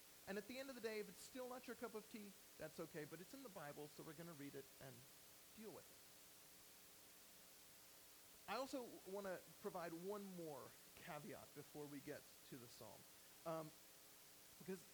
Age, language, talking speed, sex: 40-59, English, 195 wpm, male